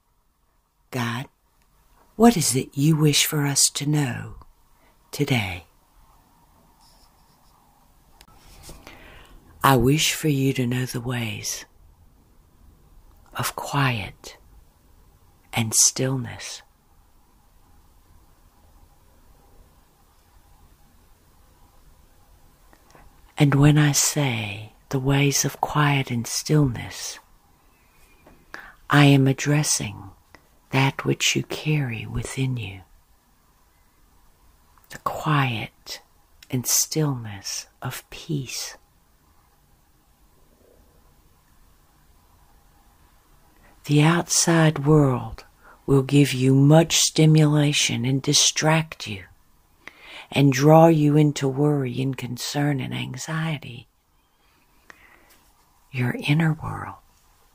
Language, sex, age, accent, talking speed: English, female, 60-79, American, 75 wpm